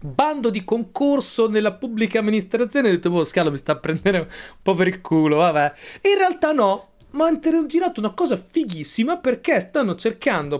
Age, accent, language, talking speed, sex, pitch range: 30-49, native, Italian, 175 wpm, male, 150-240 Hz